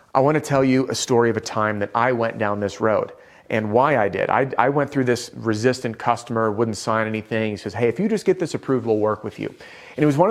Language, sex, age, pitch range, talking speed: English, male, 30-49, 105-130 Hz, 275 wpm